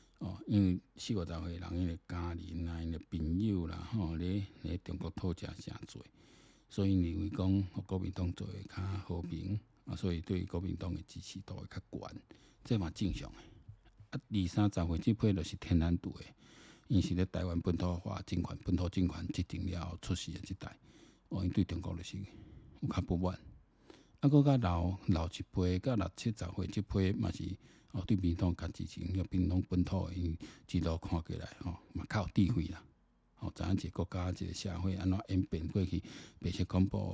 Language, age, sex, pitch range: Chinese, 60-79, male, 85-100 Hz